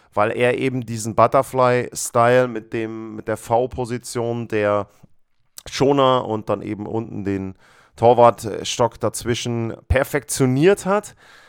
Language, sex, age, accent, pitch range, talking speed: German, male, 30-49, German, 110-140 Hz, 110 wpm